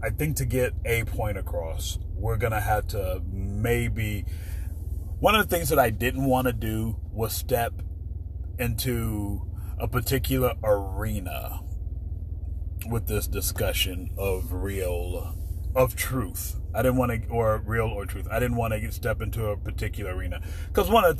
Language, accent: English, American